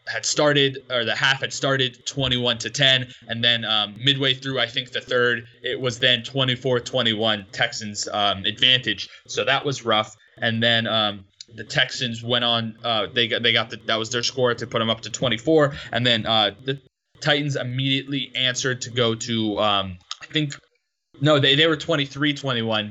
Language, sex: English, male